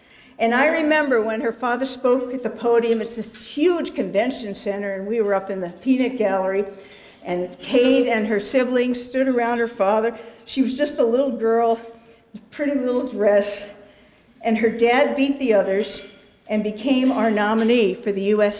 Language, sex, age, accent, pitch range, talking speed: English, female, 50-69, American, 210-265 Hz, 175 wpm